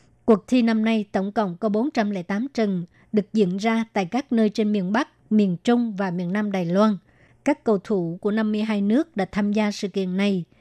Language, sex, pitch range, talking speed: Vietnamese, male, 200-225 Hz, 210 wpm